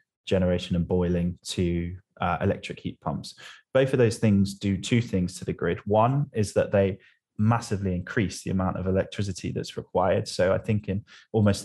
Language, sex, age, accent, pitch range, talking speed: English, male, 20-39, British, 90-100 Hz, 180 wpm